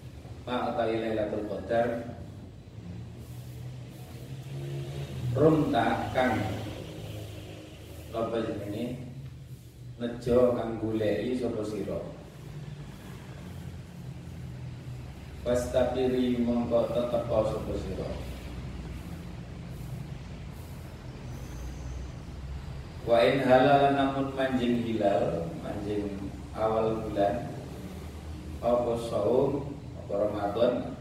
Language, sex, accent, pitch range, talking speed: Indonesian, male, native, 85-120 Hz, 55 wpm